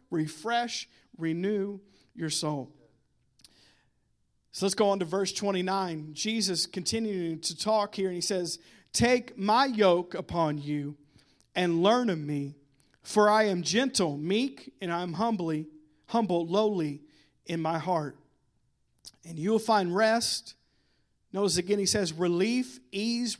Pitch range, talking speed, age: 175-225 Hz, 130 wpm, 50-69